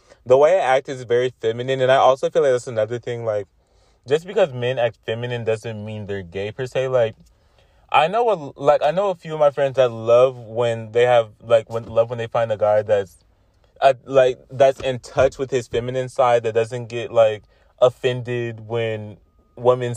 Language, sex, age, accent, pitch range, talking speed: English, male, 20-39, American, 100-130 Hz, 210 wpm